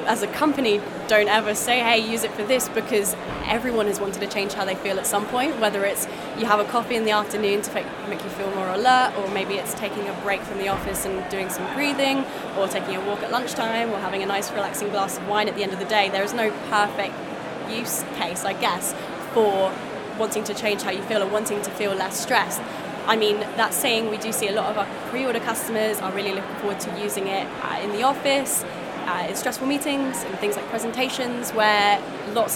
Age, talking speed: 10-29, 235 wpm